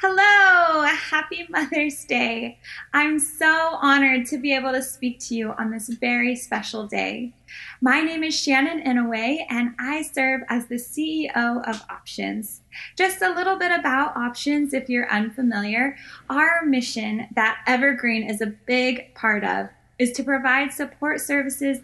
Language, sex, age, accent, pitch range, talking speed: English, female, 20-39, American, 230-280 Hz, 150 wpm